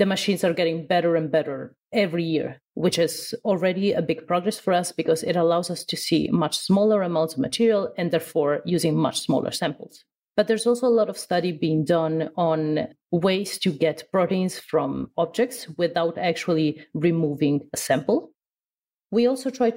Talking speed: 175 wpm